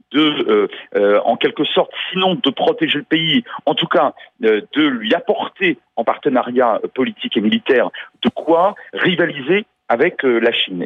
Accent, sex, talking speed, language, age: French, male, 165 wpm, French, 40-59